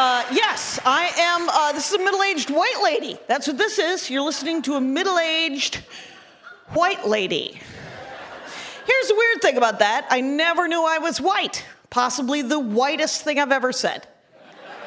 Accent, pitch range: American, 265-375 Hz